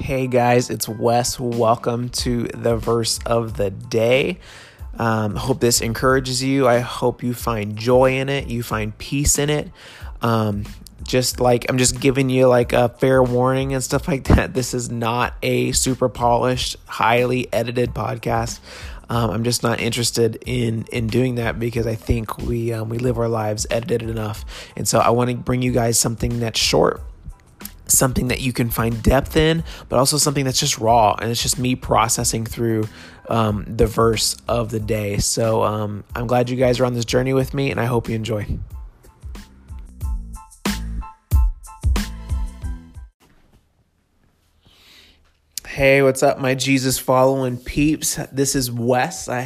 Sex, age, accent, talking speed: male, 30-49, American, 165 wpm